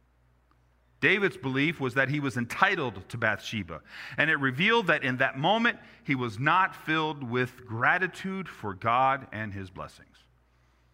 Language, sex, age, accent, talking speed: English, male, 40-59, American, 150 wpm